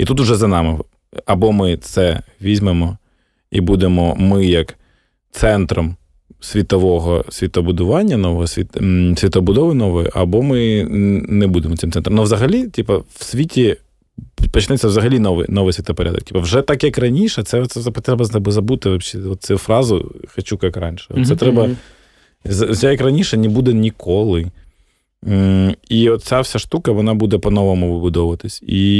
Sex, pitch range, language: male, 90-110 Hz, Ukrainian